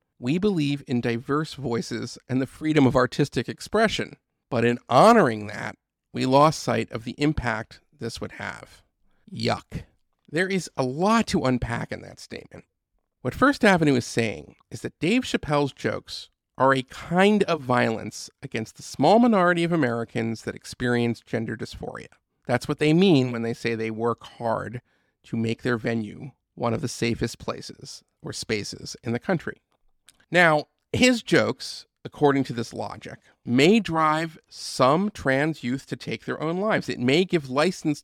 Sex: male